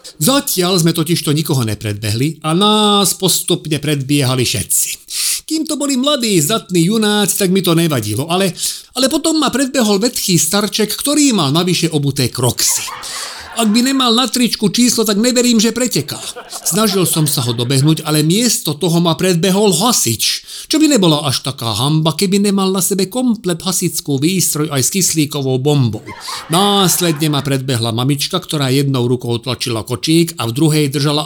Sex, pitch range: male, 140-205 Hz